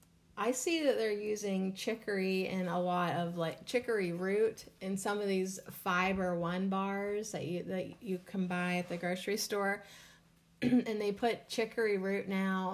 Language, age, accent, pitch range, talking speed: English, 30-49, American, 180-225 Hz, 170 wpm